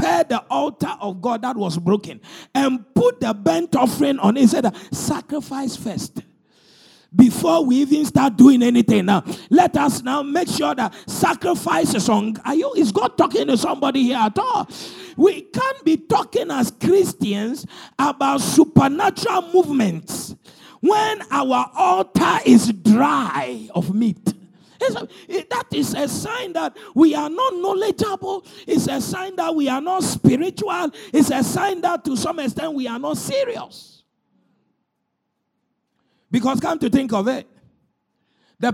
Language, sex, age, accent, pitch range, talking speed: English, male, 50-69, Nigerian, 230-320 Hz, 145 wpm